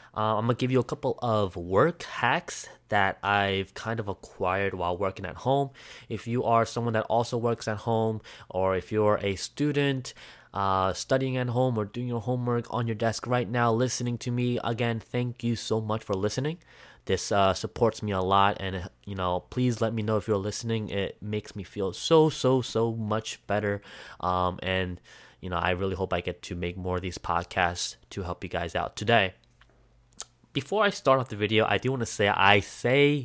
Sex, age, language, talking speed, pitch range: male, 20-39, English, 210 wpm, 95-120 Hz